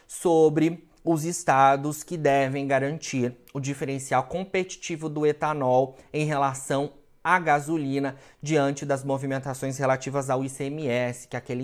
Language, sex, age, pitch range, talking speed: Portuguese, male, 20-39, 125-150 Hz, 125 wpm